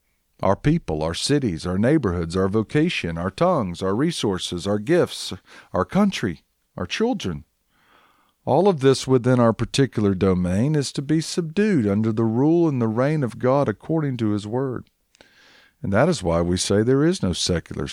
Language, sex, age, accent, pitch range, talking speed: English, male, 50-69, American, 95-140 Hz, 170 wpm